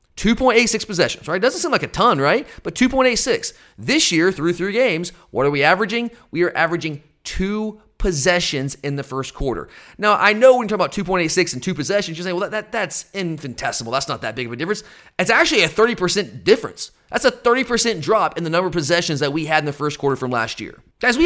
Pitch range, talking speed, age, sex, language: 155-230 Hz, 255 wpm, 30-49, male, English